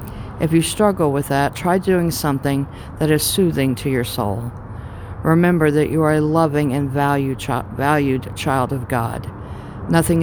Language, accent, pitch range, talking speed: English, American, 115-155 Hz, 160 wpm